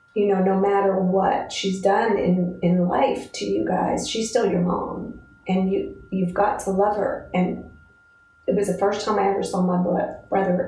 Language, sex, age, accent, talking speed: English, female, 40-59, American, 210 wpm